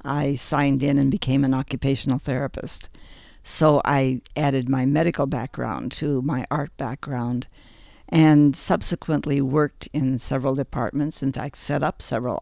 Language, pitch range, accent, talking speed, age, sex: English, 125-155 Hz, American, 140 wpm, 60-79, female